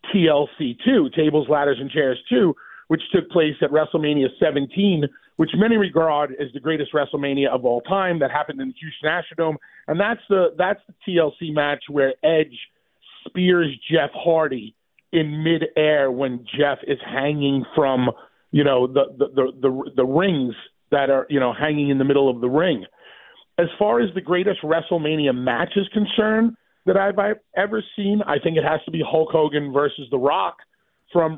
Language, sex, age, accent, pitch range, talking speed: English, male, 40-59, American, 145-190 Hz, 175 wpm